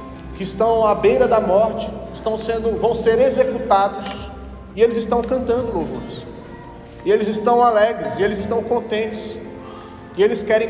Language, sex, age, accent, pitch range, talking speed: Portuguese, male, 40-59, Brazilian, 180-225 Hz, 140 wpm